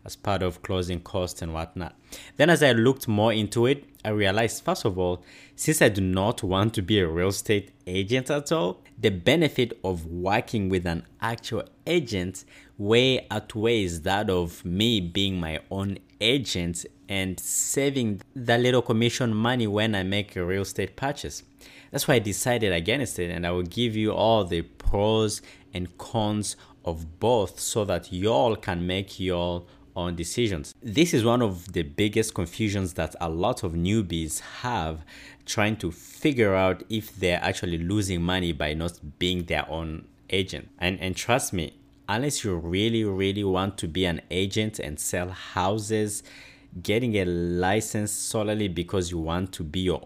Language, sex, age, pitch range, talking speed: English, male, 30-49, 90-115 Hz, 170 wpm